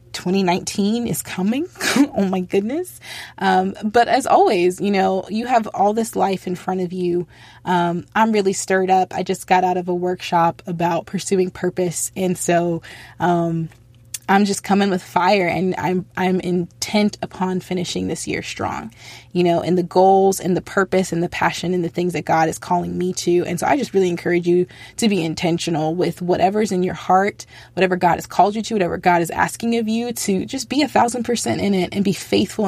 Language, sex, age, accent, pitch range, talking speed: English, female, 20-39, American, 170-195 Hz, 205 wpm